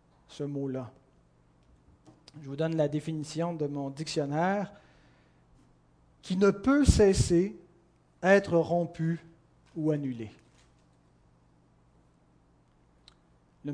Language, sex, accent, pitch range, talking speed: French, male, French, 135-175 Hz, 85 wpm